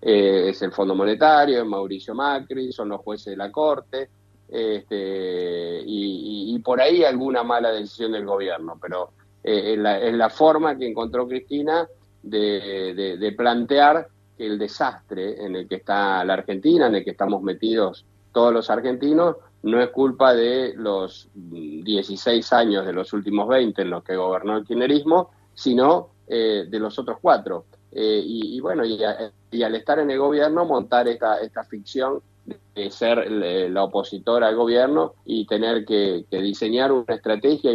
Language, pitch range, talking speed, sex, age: Spanish, 100-125 Hz, 170 wpm, male, 50-69